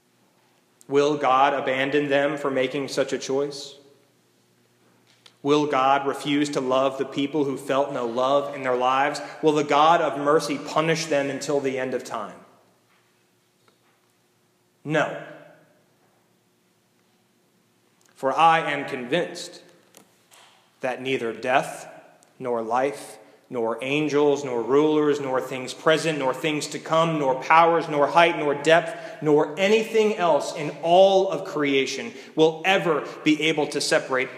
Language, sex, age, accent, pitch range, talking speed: English, male, 30-49, American, 115-145 Hz, 130 wpm